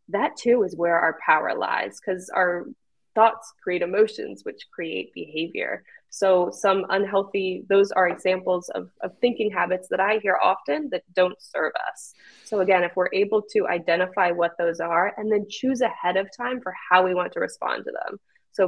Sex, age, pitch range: female, 20-39, 175-215 Hz